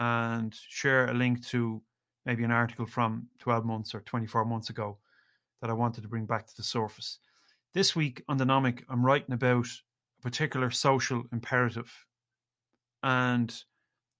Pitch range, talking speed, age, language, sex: 115-125 Hz, 155 wpm, 30-49, English, male